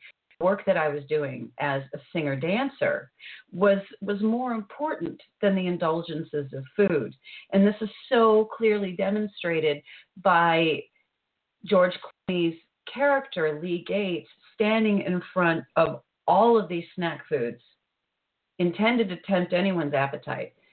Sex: female